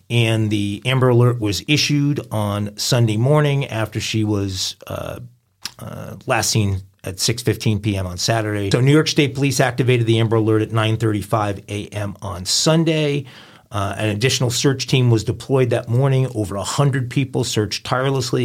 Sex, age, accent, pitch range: male, 40-59, American, 105-130 Hz